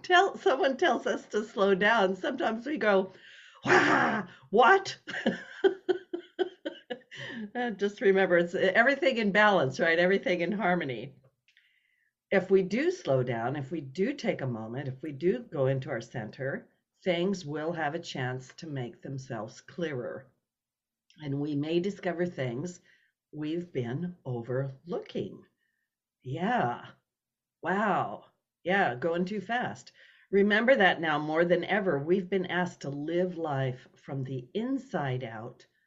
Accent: American